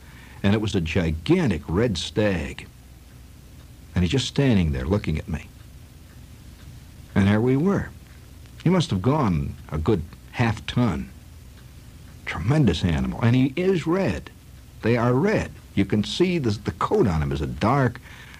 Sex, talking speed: male, 155 wpm